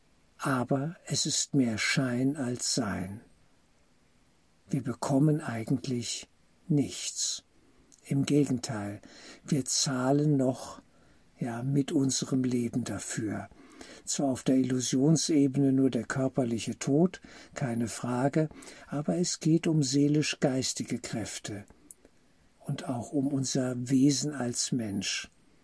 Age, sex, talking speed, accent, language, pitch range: 60-79, male, 100 wpm, German, German, 120-145 Hz